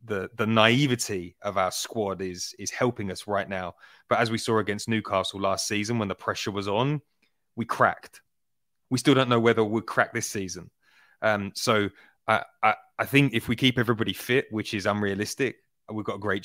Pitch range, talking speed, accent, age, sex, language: 100-120 Hz, 195 wpm, British, 30-49, male, English